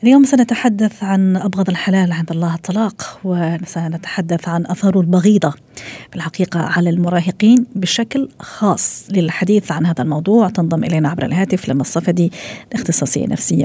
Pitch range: 180-220 Hz